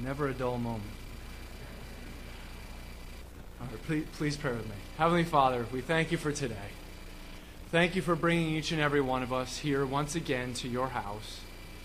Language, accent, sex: English, American, male